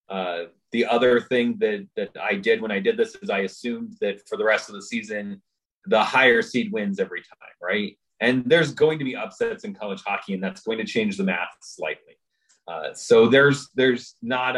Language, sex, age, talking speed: English, male, 30-49, 210 wpm